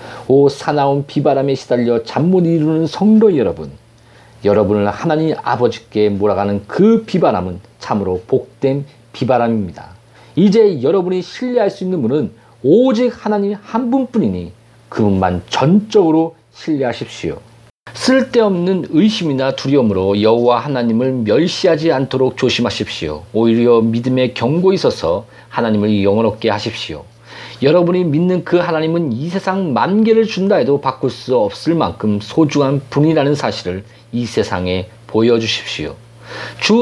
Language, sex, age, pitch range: Korean, male, 40-59, 115-185 Hz